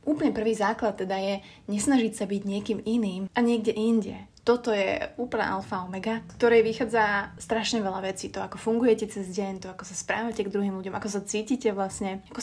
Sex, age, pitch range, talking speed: female, 20-39, 195-230 Hz, 195 wpm